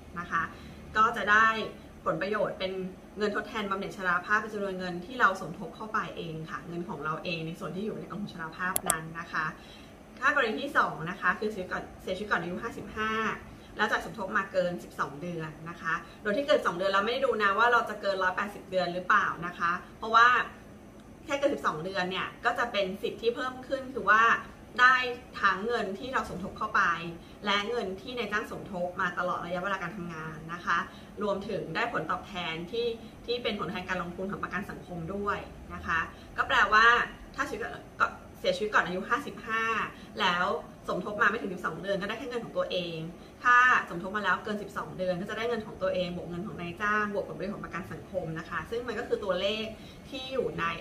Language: Thai